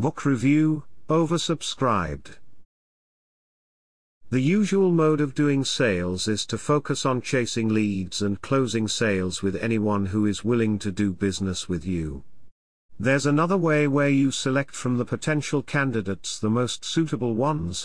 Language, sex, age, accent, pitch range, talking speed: English, male, 50-69, British, 105-140 Hz, 140 wpm